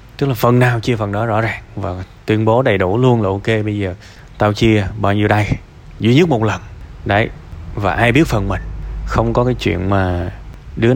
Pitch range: 110-145 Hz